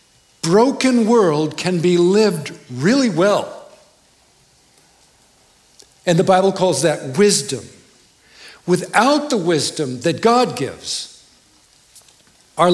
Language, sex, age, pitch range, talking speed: English, male, 60-79, 150-200 Hz, 100 wpm